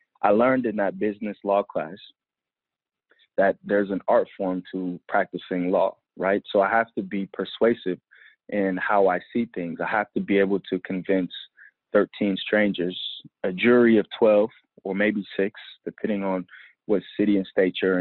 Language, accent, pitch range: English, American, 90-105 Hz